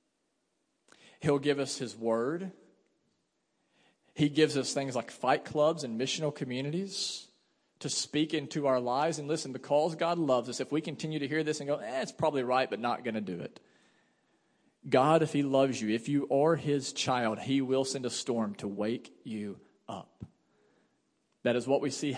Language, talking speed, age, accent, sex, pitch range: English, 185 wpm, 40-59, American, male, 140-185 Hz